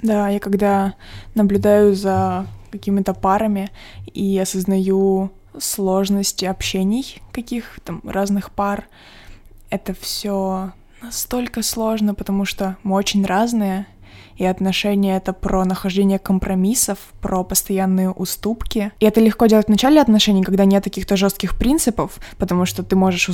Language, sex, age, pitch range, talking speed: Ukrainian, female, 20-39, 180-200 Hz, 130 wpm